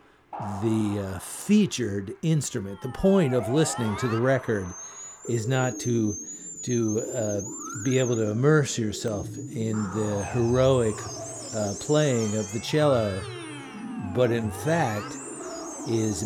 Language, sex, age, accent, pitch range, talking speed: English, male, 50-69, American, 105-135 Hz, 120 wpm